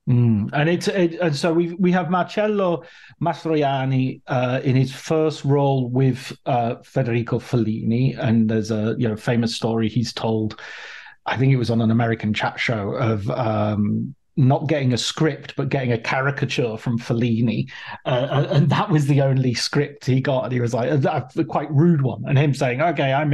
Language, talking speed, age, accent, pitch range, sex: English, 190 wpm, 30-49, British, 125-155 Hz, male